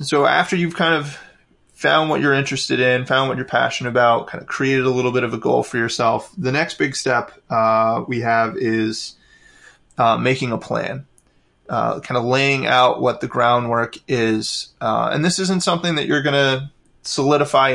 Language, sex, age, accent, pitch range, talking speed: English, male, 20-39, American, 115-135 Hz, 190 wpm